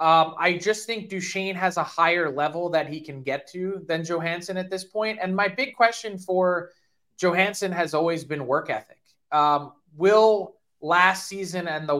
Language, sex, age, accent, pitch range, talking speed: English, male, 20-39, American, 150-195 Hz, 180 wpm